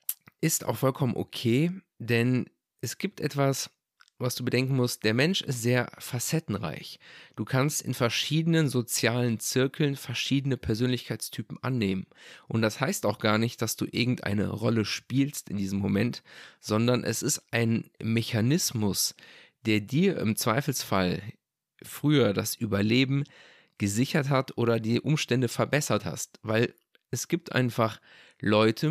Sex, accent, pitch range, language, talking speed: male, German, 110-135 Hz, German, 135 wpm